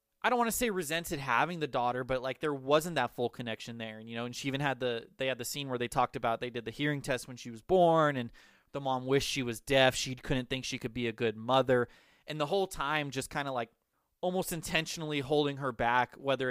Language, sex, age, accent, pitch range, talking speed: English, male, 20-39, American, 120-150 Hz, 260 wpm